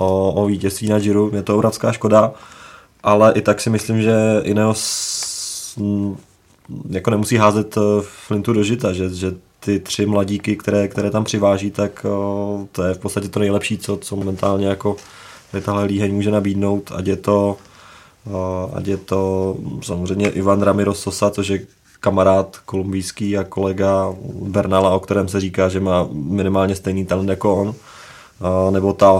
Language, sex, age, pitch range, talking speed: Czech, male, 20-39, 95-105 Hz, 155 wpm